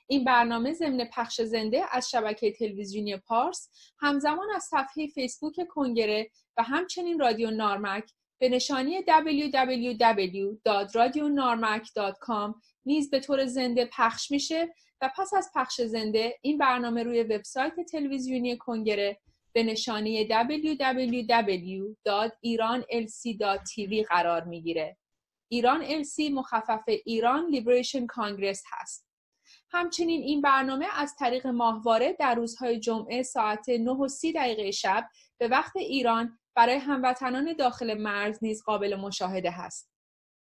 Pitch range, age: 220-285 Hz, 30-49